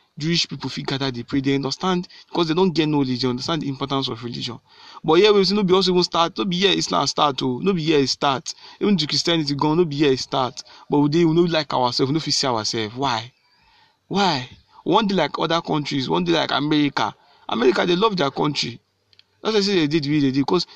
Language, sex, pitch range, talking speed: English, male, 135-175 Hz, 245 wpm